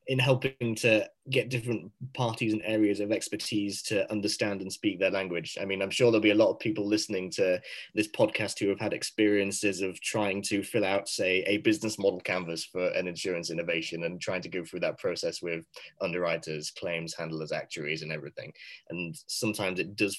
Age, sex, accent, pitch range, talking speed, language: 20-39, male, British, 95-125 Hz, 195 wpm, English